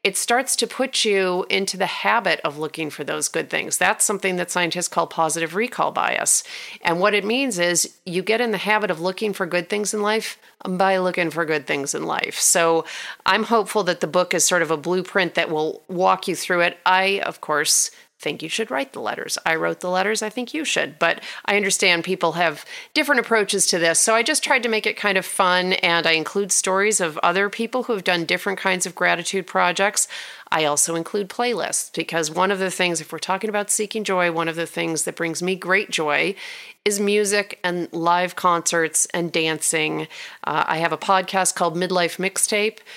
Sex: female